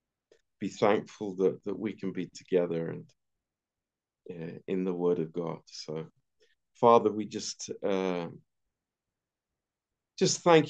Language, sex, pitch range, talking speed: Romanian, male, 95-110 Hz, 125 wpm